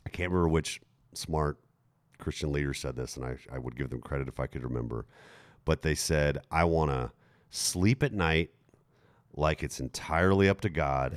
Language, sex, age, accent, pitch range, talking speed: English, male, 40-59, American, 75-95 Hz, 190 wpm